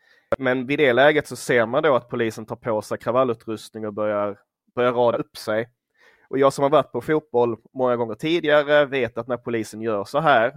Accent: native